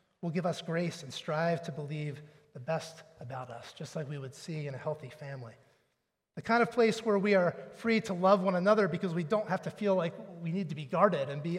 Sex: male